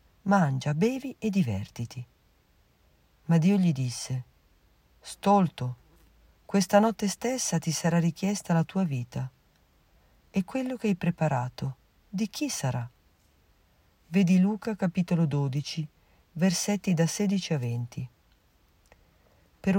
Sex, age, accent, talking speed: female, 40-59, native, 110 wpm